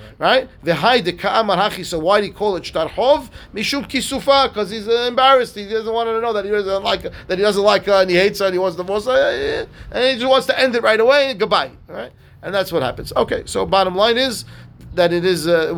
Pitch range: 160-215 Hz